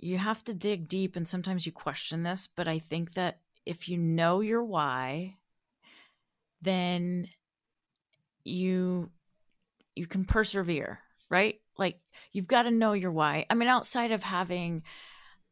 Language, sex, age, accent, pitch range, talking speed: English, female, 30-49, American, 155-190 Hz, 145 wpm